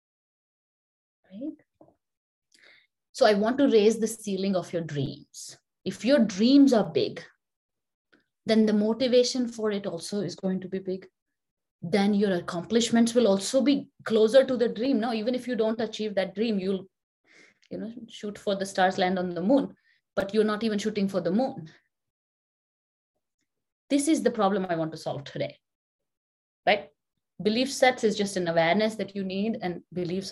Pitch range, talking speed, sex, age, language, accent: 180-245 Hz, 170 wpm, female, 20-39, English, Indian